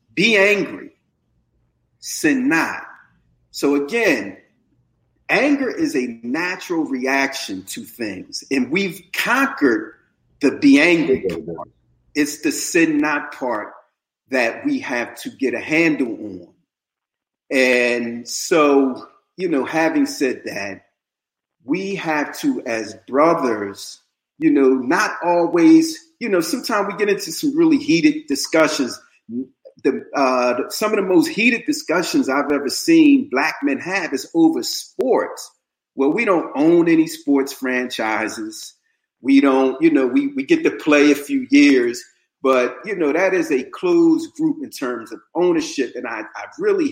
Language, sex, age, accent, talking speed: English, male, 40-59, American, 145 wpm